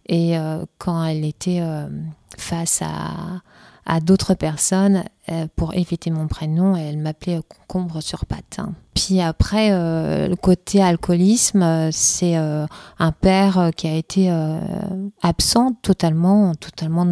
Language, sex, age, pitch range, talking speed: French, female, 30-49, 160-190 Hz, 140 wpm